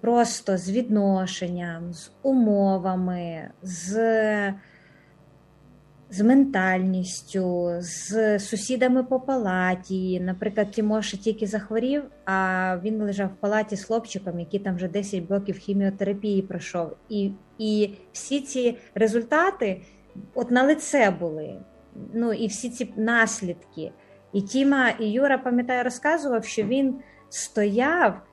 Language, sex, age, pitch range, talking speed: Ukrainian, female, 20-39, 190-245 Hz, 110 wpm